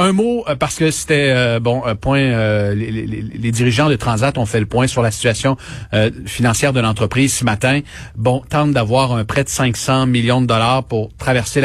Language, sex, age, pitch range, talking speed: French, male, 40-59, 115-140 Hz, 210 wpm